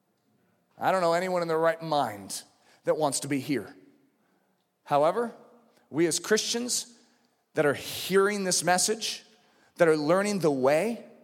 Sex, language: male, English